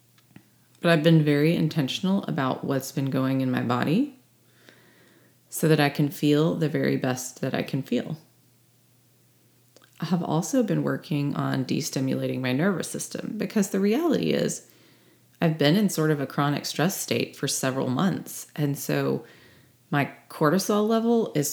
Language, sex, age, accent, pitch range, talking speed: English, female, 30-49, American, 130-175 Hz, 160 wpm